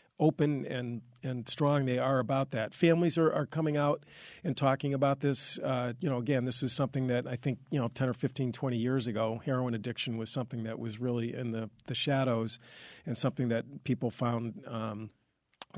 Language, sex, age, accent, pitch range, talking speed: English, male, 40-59, American, 120-140 Hz, 200 wpm